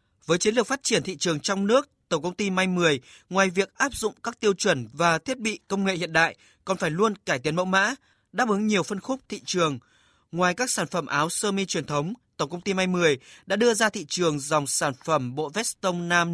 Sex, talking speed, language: male, 250 wpm, Vietnamese